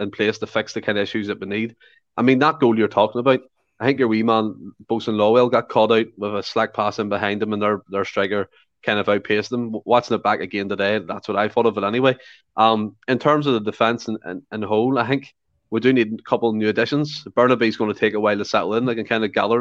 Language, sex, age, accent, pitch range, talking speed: English, male, 20-39, Irish, 105-120 Hz, 265 wpm